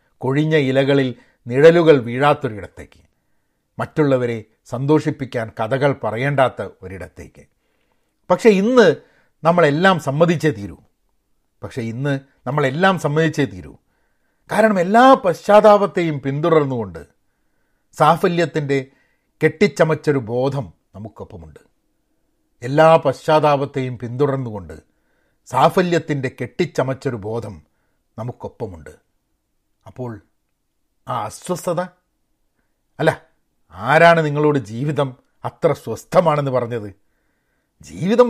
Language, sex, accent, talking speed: Malayalam, male, native, 70 wpm